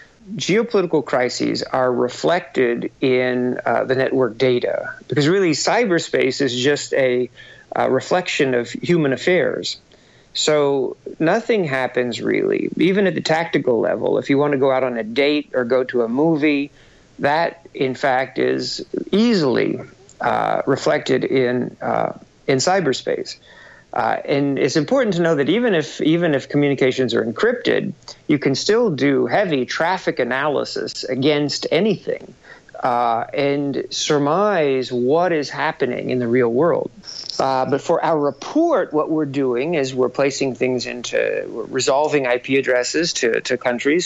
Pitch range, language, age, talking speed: 125-175 Hz, English, 50-69, 145 wpm